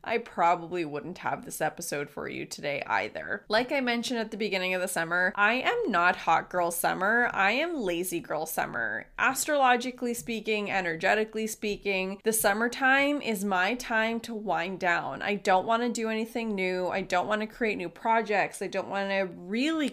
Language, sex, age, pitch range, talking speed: English, female, 20-39, 185-235 Hz, 175 wpm